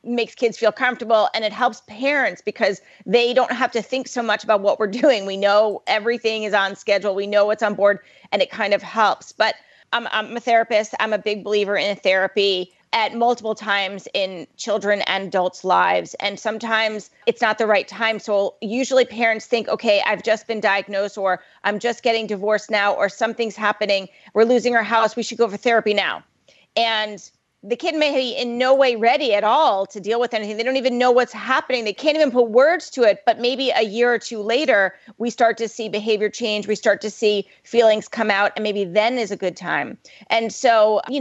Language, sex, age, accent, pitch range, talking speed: English, female, 40-59, American, 205-245 Hz, 215 wpm